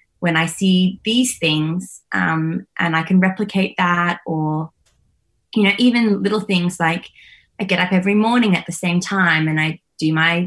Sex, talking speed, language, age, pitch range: female, 180 wpm, English, 20-39, 165-200 Hz